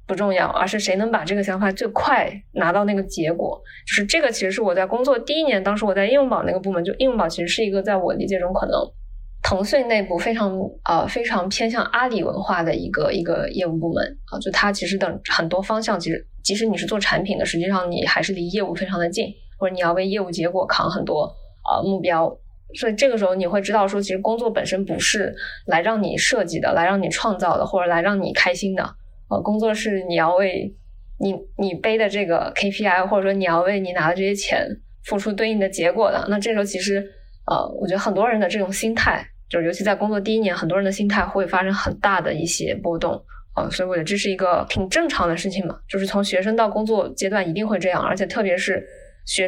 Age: 20-39